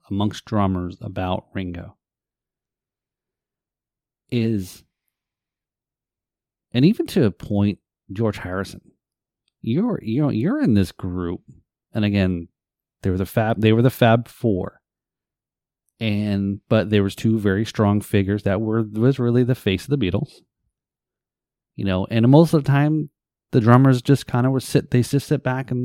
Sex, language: male, English